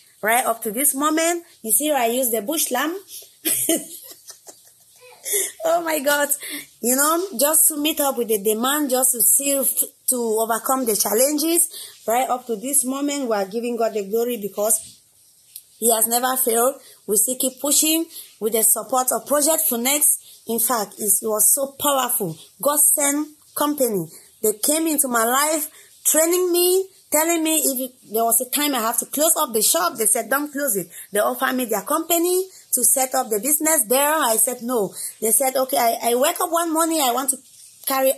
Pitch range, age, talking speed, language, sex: 230-305 Hz, 20-39, 190 wpm, English, female